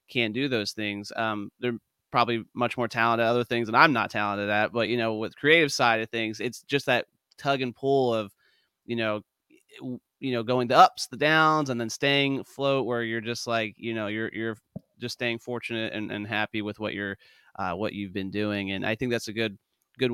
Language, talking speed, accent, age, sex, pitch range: English, 225 wpm, American, 30-49, male, 105-125 Hz